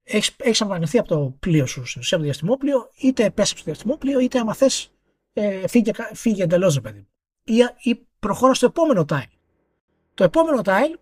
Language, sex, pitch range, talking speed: Greek, male, 155-235 Hz, 150 wpm